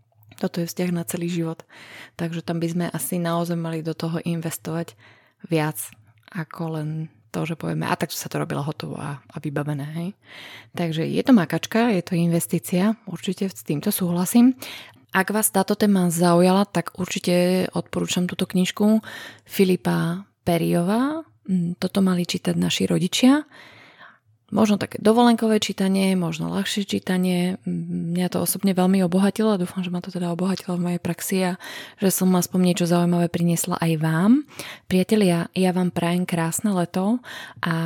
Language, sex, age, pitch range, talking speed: Slovak, female, 20-39, 165-195 Hz, 155 wpm